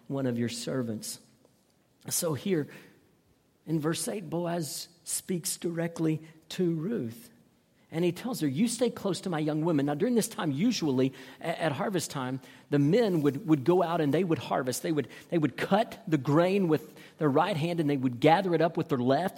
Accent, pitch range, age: American, 145-175 Hz, 50-69